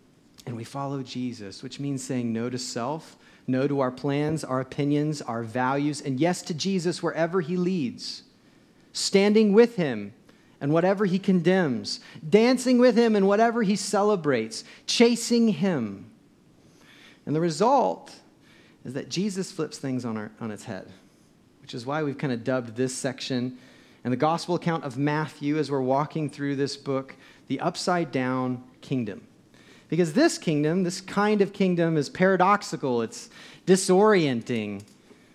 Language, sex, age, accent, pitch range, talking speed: English, male, 40-59, American, 135-200 Hz, 150 wpm